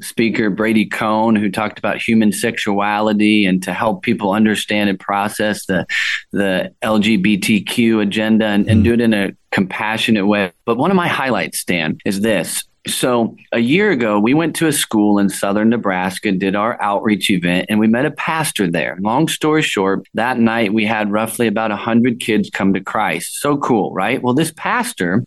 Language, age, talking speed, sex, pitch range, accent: English, 30-49, 185 wpm, male, 105-125 Hz, American